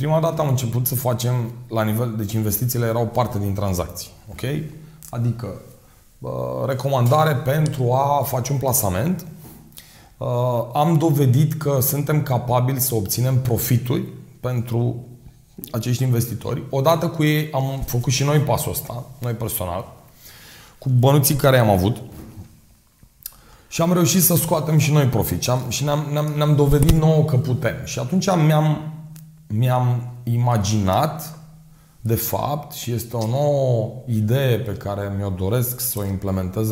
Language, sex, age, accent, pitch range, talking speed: Romanian, male, 30-49, native, 110-145 Hz, 130 wpm